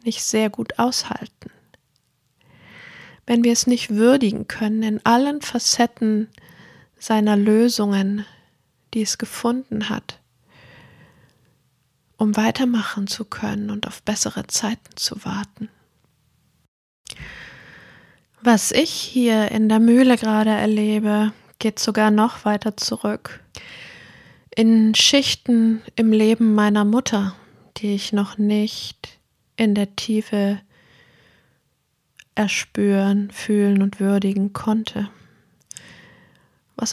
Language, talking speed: German, 100 wpm